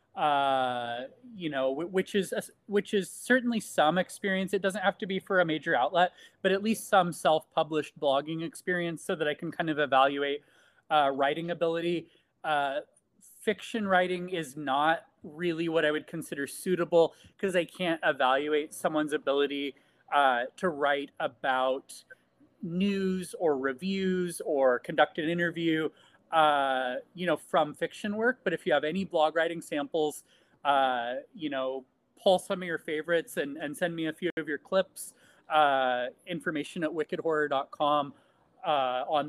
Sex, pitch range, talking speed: male, 145-185 Hz, 155 wpm